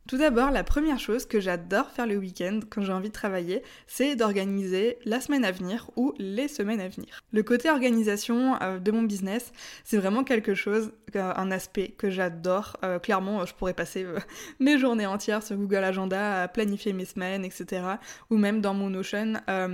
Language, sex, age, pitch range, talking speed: French, female, 20-39, 190-235 Hz, 190 wpm